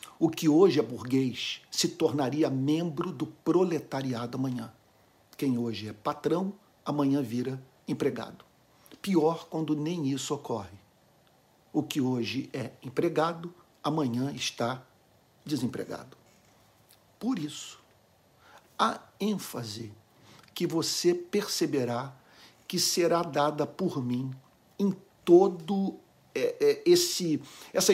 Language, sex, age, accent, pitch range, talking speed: Portuguese, male, 50-69, Brazilian, 135-175 Hz, 100 wpm